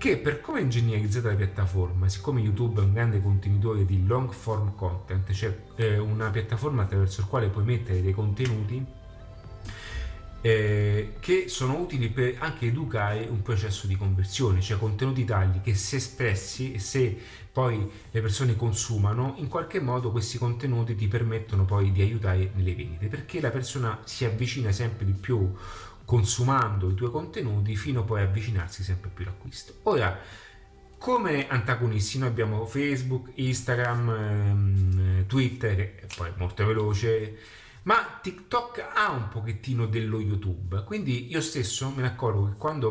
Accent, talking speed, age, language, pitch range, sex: native, 150 wpm, 30-49, Italian, 100-125 Hz, male